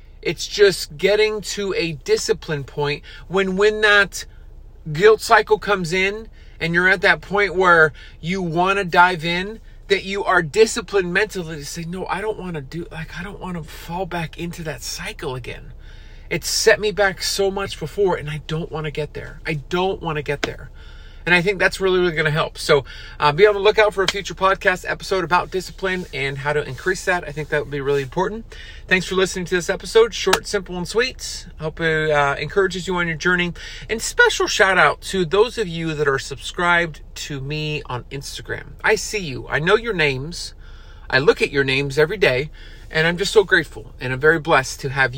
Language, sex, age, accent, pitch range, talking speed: English, male, 40-59, American, 150-195 Hz, 215 wpm